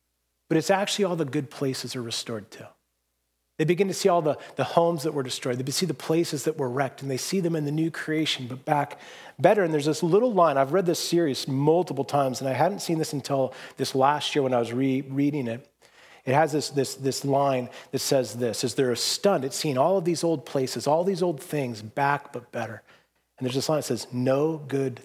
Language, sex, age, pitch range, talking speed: English, male, 40-59, 95-160 Hz, 235 wpm